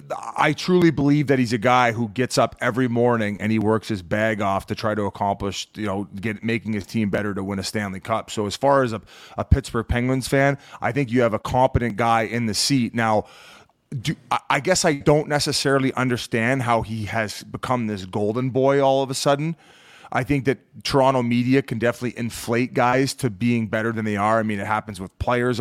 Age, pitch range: 30-49, 110-130 Hz